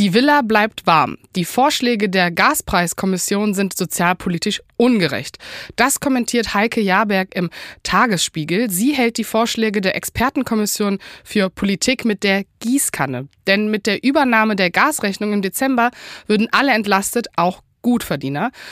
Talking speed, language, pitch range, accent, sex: 130 wpm, German, 185-230 Hz, German, female